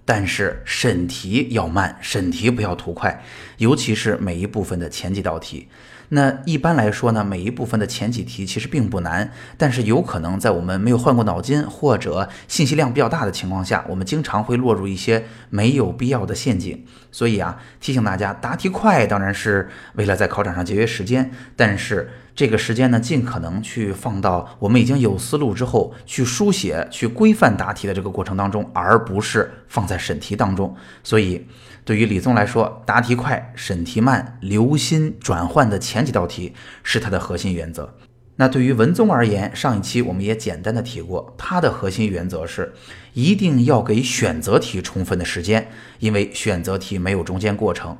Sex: male